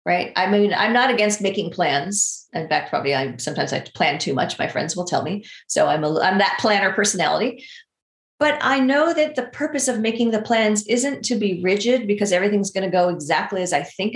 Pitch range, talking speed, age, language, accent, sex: 200-260 Hz, 220 wpm, 40-59, English, American, female